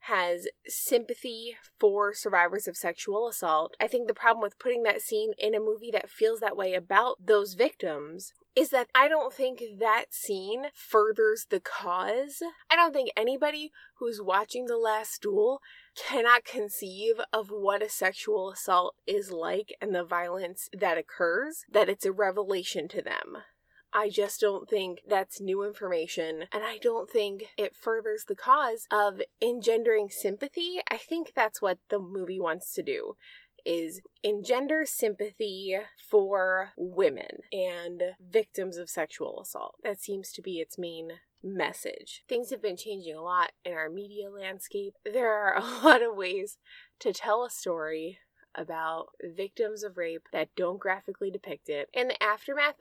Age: 20-39